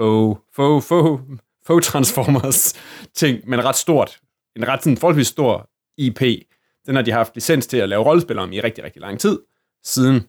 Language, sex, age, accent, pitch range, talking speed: Danish, male, 30-49, native, 115-135 Hz, 175 wpm